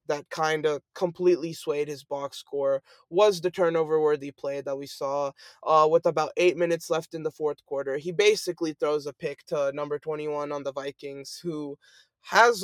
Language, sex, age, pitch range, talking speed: English, male, 20-39, 145-180 Hz, 185 wpm